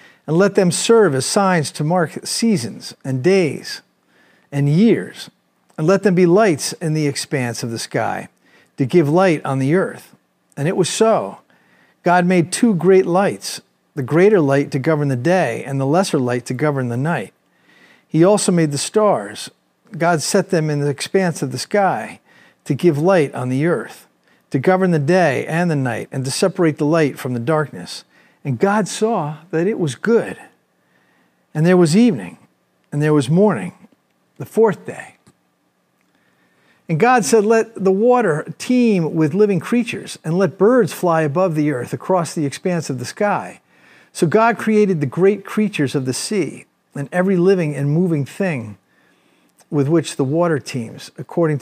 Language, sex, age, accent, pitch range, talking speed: English, male, 50-69, American, 145-195 Hz, 175 wpm